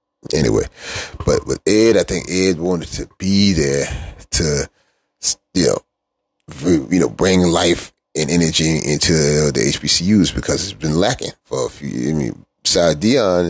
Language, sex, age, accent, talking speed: English, male, 30-49, American, 155 wpm